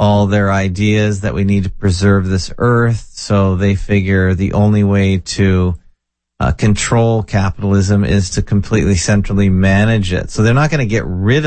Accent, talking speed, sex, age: American, 175 wpm, male, 30-49